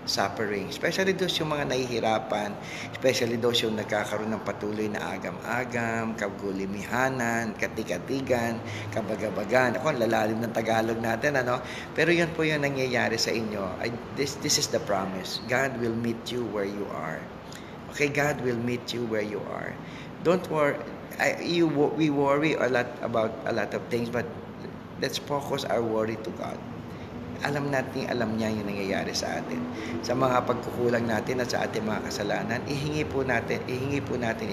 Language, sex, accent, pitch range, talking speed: English, male, Filipino, 110-135 Hz, 165 wpm